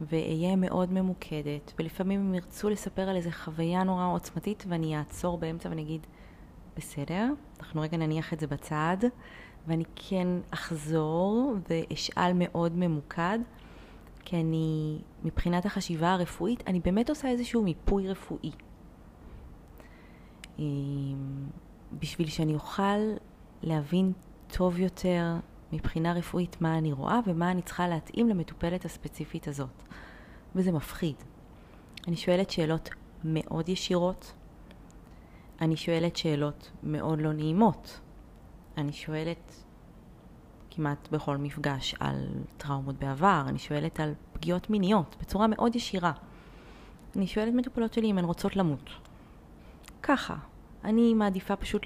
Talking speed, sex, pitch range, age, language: 115 wpm, female, 155-190 Hz, 30-49, Hebrew